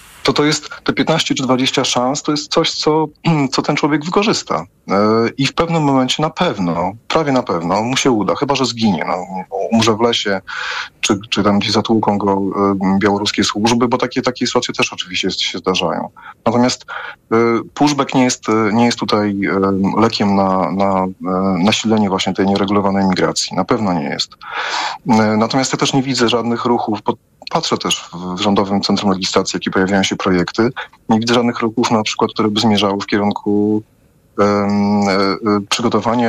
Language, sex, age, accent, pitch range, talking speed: Polish, male, 30-49, native, 100-125 Hz, 165 wpm